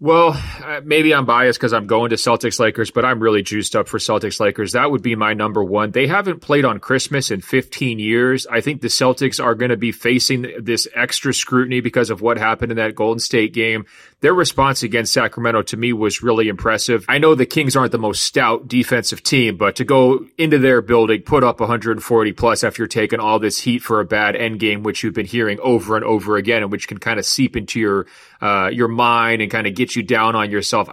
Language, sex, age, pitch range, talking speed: English, male, 30-49, 110-125 Hz, 230 wpm